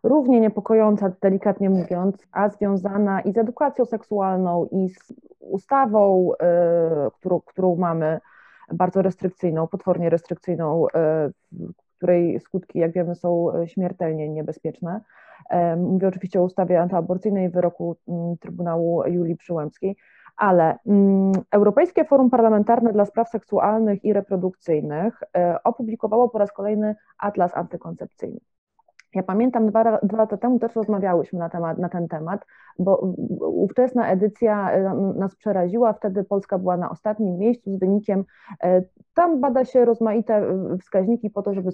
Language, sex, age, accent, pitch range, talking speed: English, female, 30-49, Polish, 180-215 Hz, 120 wpm